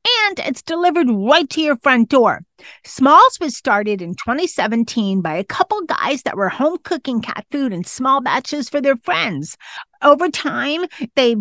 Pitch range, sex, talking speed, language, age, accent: 210-300 Hz, female, 170 wpm, English, 40-59, American